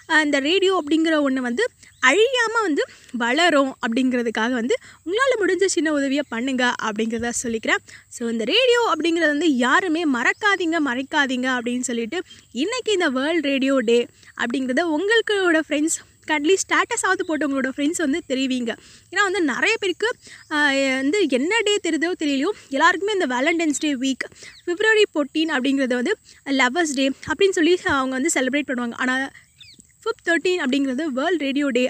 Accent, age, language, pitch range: native, 20-39, Tamil, 265-365 Hz